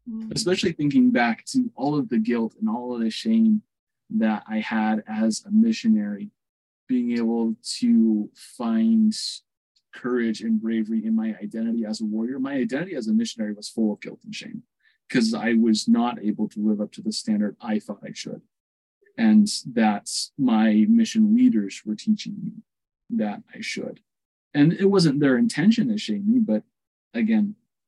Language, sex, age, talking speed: English, male, 20-39, 170 wpm